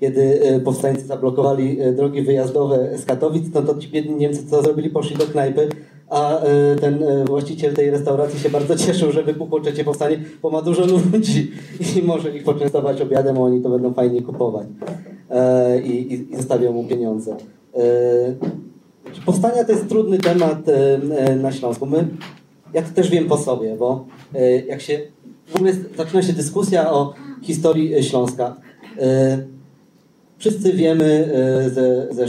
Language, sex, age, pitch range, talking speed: Polish, male, 30-49, 130-165 Hz, 165 wpm